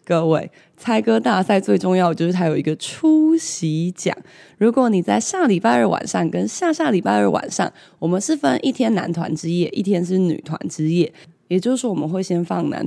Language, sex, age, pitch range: Chinese, female, 20-39, 165-200 Hz